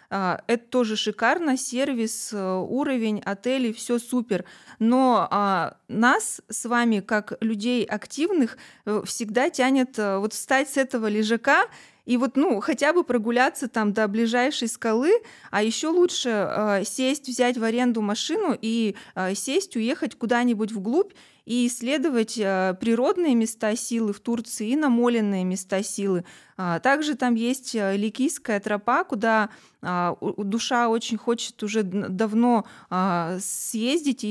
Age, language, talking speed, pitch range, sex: 20-39, Russian, 120 wpm, 205-250 Hz, female